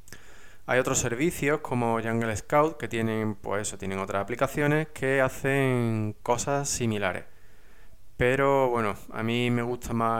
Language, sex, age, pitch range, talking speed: Spanish, male, 20-39, 105-135 Hz, 140 wpm